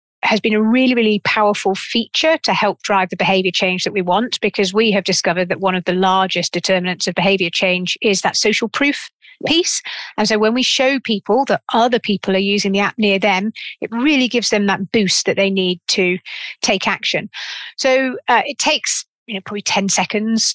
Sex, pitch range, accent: female, 190-235 Hz, British